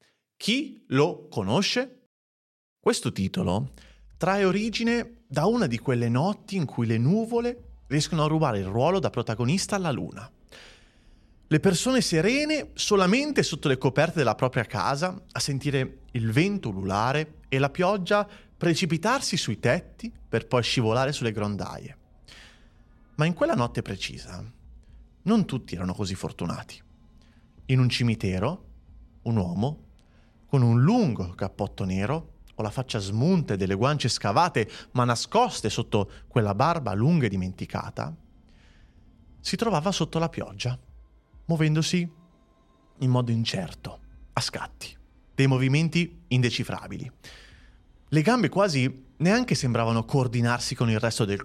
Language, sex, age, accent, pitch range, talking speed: Italian, male, 30-49, native, 105-165 Hz, 130 wpm